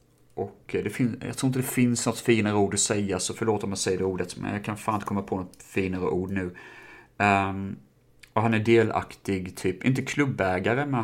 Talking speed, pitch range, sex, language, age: 215 wpm, 95-120 Hz, male, Swedish, 30-49